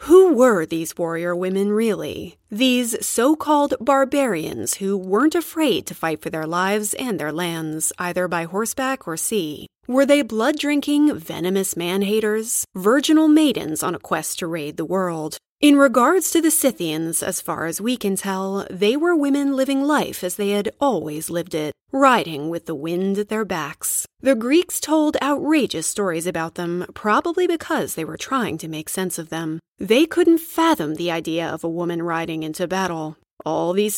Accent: American